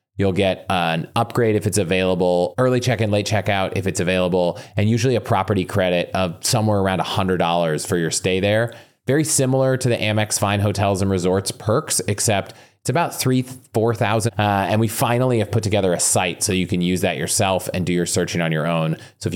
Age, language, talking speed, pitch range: 30-49, English, 205 wpm, 95-120 Hz